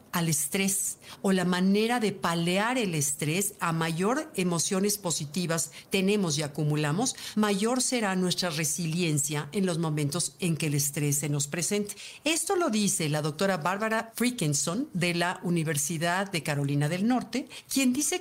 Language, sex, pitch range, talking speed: Spanish, female, 165-215 Hz, 150 wpm